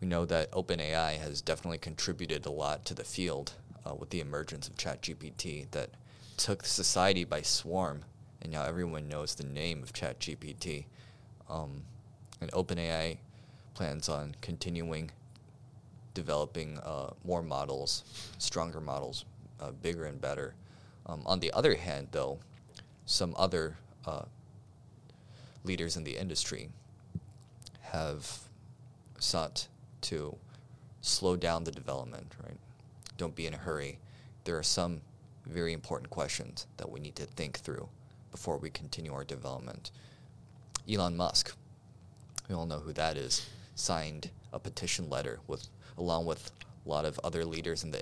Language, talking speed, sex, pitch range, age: English, 140 wpm, male, 80-120 Hz, 20-39